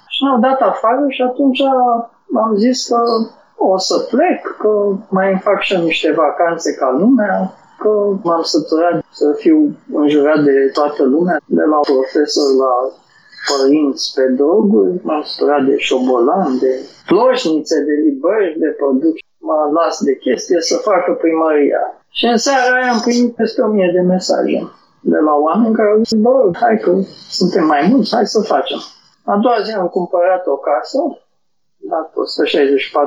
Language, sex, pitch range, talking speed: Romanian, male, 150-230 Hz, 160 wpm